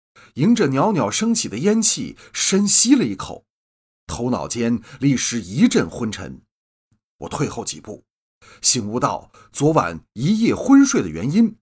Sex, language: male, Chinese